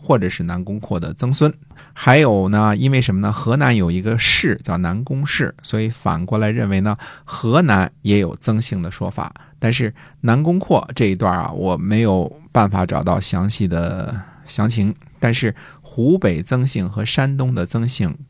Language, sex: Chinese, male